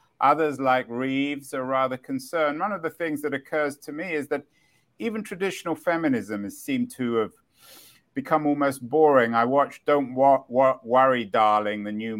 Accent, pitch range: British, 110-155 Hz